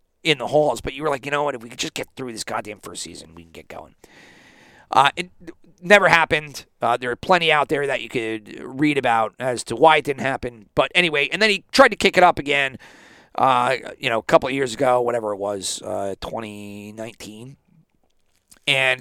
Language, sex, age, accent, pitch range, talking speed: English, male, 40-59, American, 130-190 Hz, 220 wpm